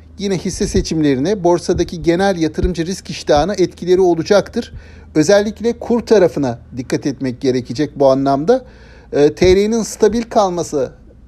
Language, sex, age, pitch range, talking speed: Turkish, male, 60-79, 145-210 Hz, 115 wpm